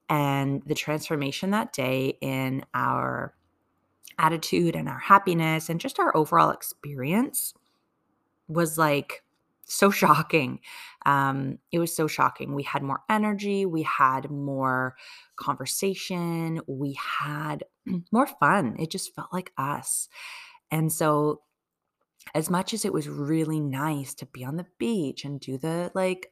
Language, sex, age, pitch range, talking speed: English, female, 30-49, 140-185 Hz, 135 wpm